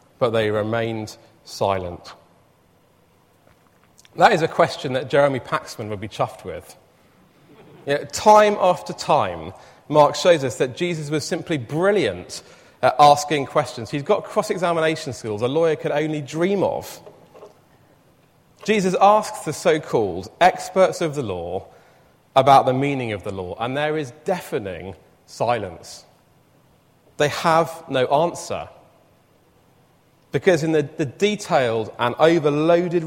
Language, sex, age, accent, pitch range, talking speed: English, male, 30-49, British, 125-165 Hz, 130 wpm